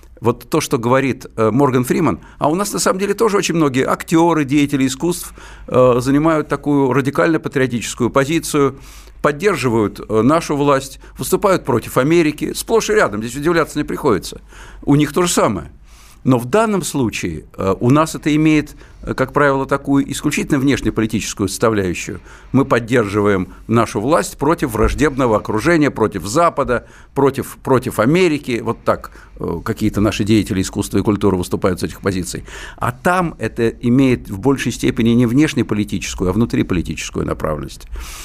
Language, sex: Russian, male